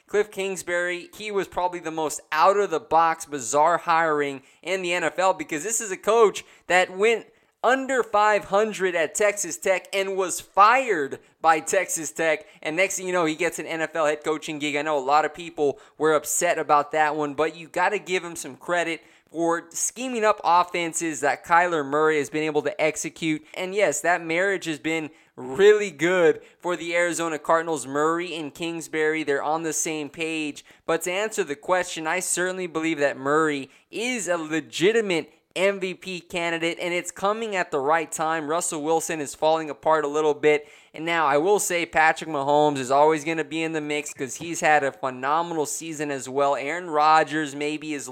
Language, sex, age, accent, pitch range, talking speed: English, male, 20-39, American, 150-180 Hz, 190 wpm